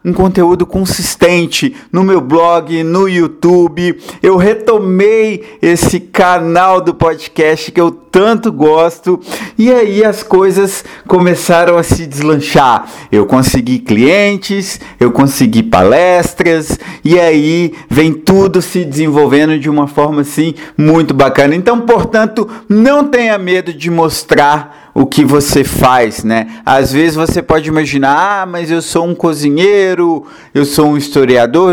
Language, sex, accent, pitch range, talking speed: Portuguese, male, Brazilian, 150-195 Hz, 135 wpm